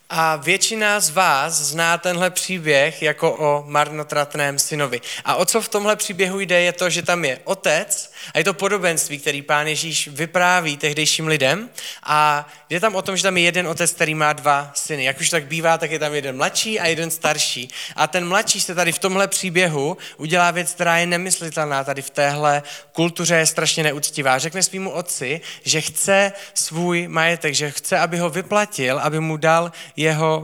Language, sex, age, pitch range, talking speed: Czech, male, 20-39, 150-180 Hz, 190 wpm